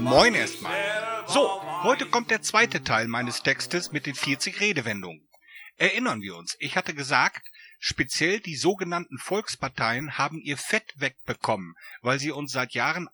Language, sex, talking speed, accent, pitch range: German, male, 150 wpm, German, 130-190 Hz